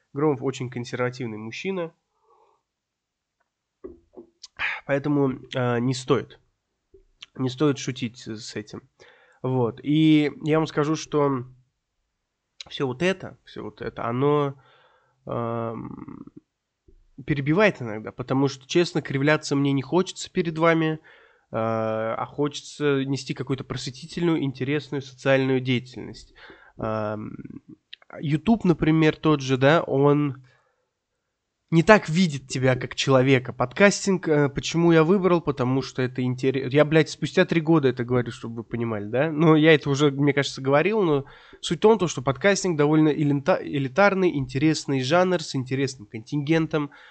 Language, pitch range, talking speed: Russian, 130-160 Hz, 125 wpm